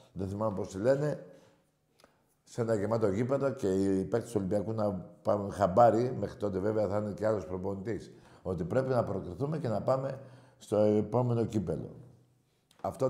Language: Greek